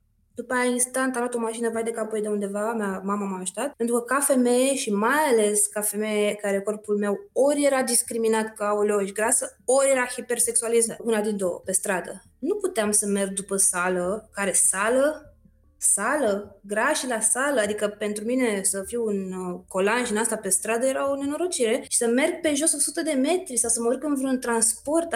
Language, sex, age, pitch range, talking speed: Romanian, female, 20-39, 205-275 Hz, 200 wpm